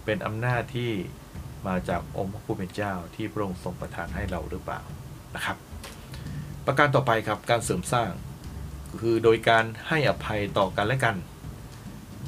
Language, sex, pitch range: Thai, male, 90-110 Hz